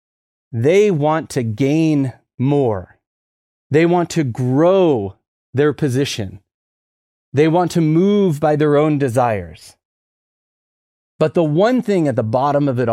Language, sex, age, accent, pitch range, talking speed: English, male, 30-49, American, 110-170 Hz, 130 wpm